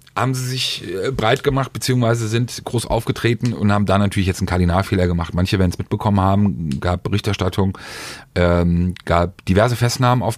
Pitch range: 95-120 Hz